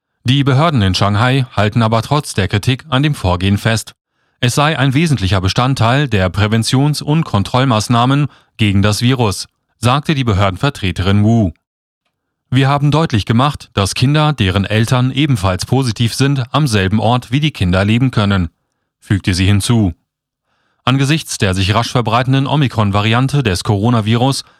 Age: 30-49